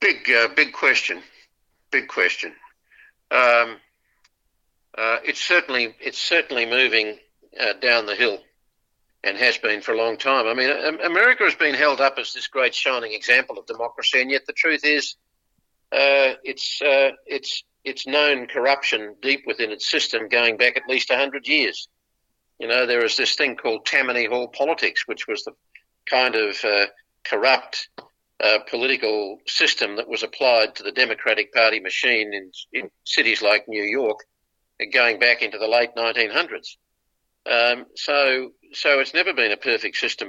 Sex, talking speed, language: male, 165 wpm, English